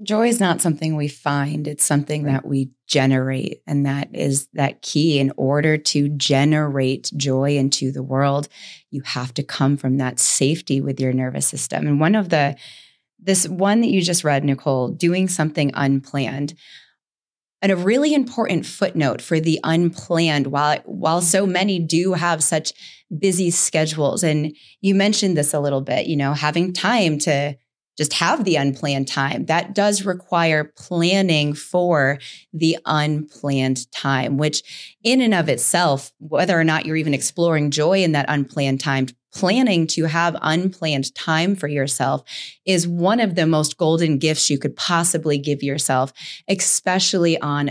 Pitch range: 140-180 Hz